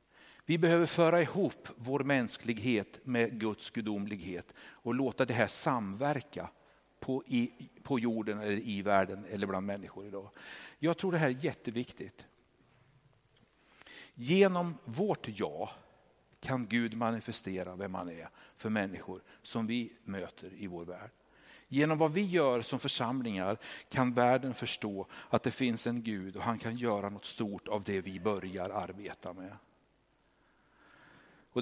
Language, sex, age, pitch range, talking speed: Swedish, male, 60-79, 110-150 Hz, 140 wpm